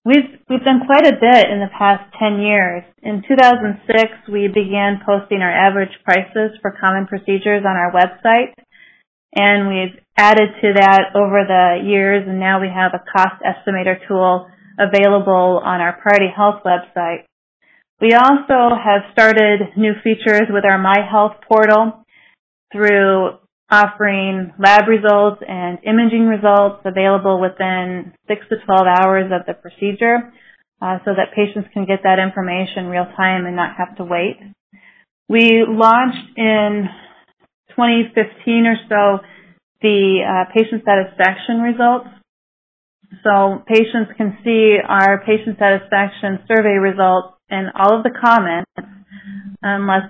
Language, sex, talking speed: English, female, 135 wpm